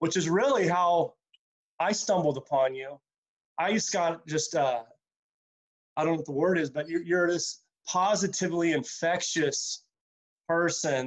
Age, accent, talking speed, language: 30-49, American, 145 wpm, English